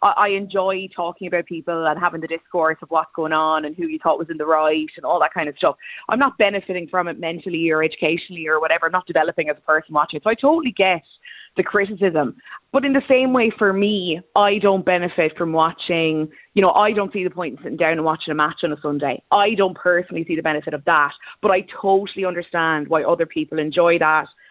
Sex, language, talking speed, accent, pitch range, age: female, English, 235 wpm, Irish, 160-195 Hz, 20-39